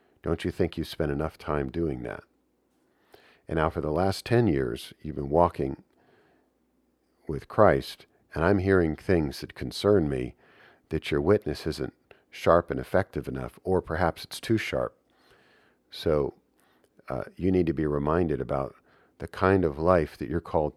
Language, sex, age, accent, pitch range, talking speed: English, male, 50-69, American, 70-85 Hz, 160 wpm